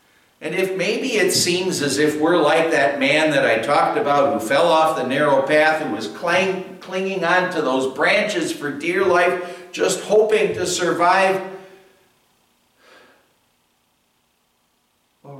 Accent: American